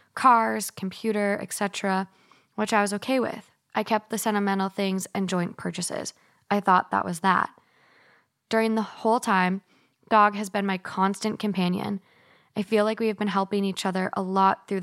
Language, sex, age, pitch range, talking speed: English, female, 10-29, 190-225 Hz, 175 wpm